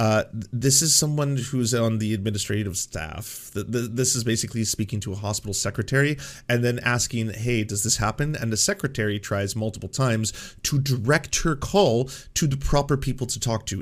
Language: English